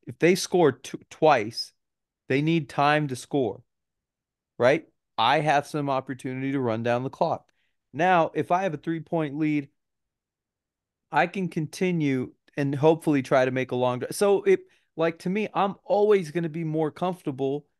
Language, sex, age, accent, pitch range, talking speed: English, male, 30-49, American, 130-165 Hz, 160 wpm